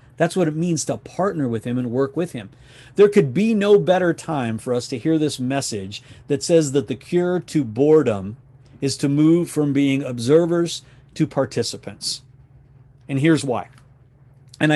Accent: American